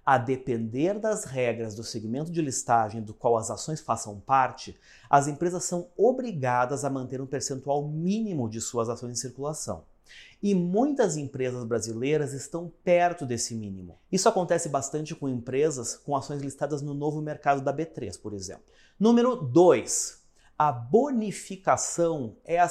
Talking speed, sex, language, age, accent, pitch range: 150 wpm, male, English, 30-49, Brazilian, 130-175 Hz